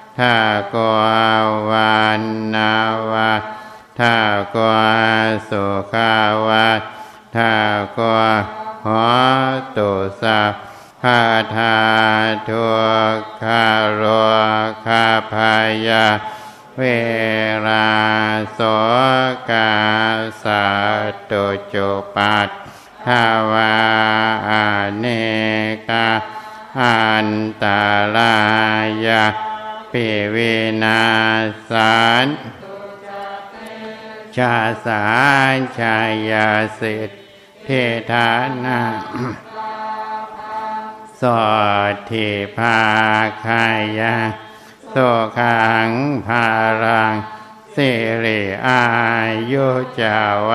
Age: 60-79